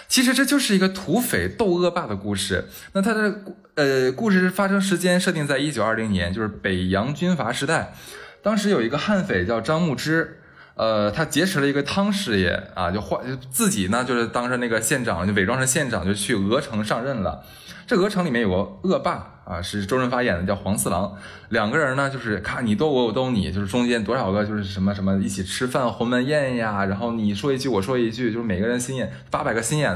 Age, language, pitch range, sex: 20-39, Chinese, 100-160 Hz, male